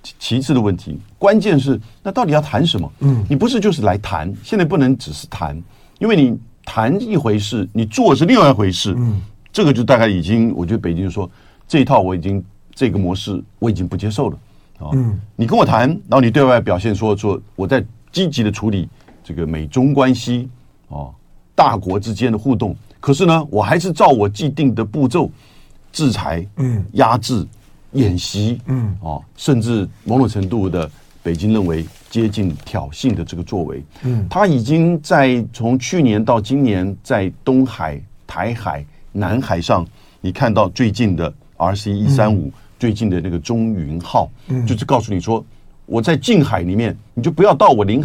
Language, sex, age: Chinese, male, 50-69